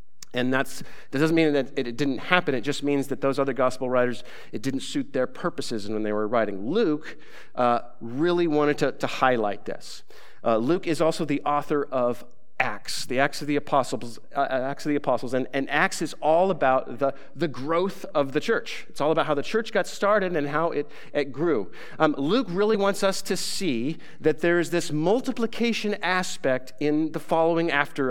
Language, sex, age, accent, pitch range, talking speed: English, male, 40-59, American, 140-185 Hz, 200 wpm